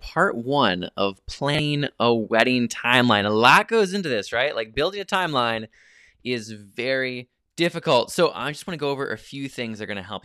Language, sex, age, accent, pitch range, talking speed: English, male, 20-39, American, 115-155 Hz, 205 wpm